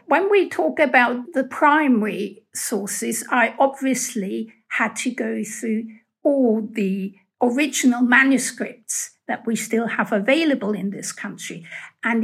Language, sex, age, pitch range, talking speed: English, female, 60-79, 215-270 Hz, 125 wpm